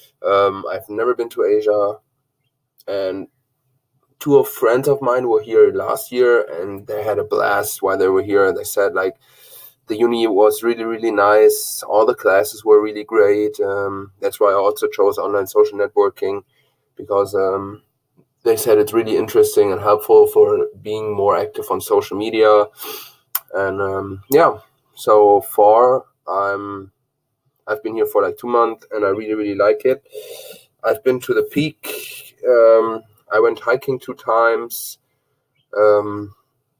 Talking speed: 160 wpm